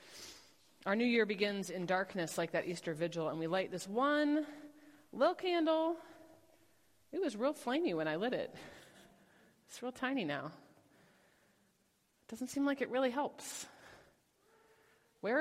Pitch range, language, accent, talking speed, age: 175-260 Hz, English, American, 145 wpm, 30-49